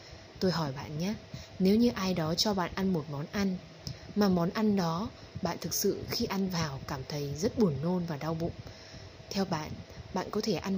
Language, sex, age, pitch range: Vietnamese, female, 20-39, 135-185 Hz